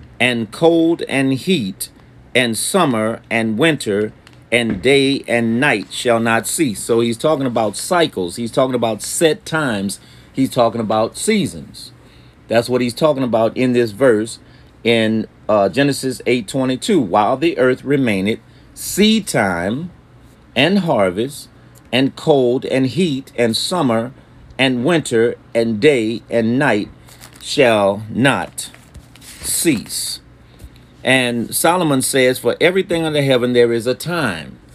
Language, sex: English, male